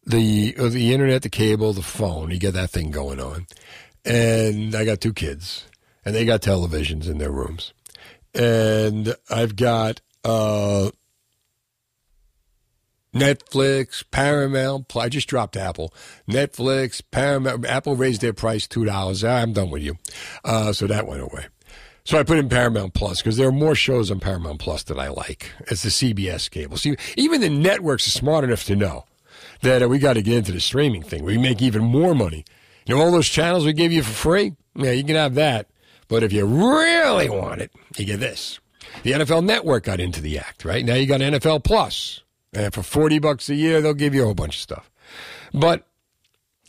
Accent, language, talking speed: American, English, 190 wpm